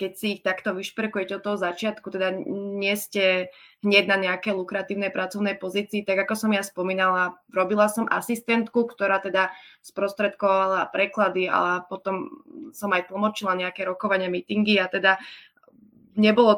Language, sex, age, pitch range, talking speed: Slovak, female, 20-39, 190-220 Hz, 145 wpm